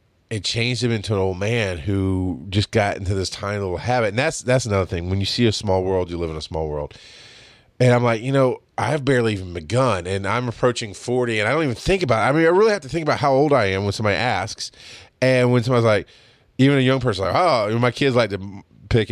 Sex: male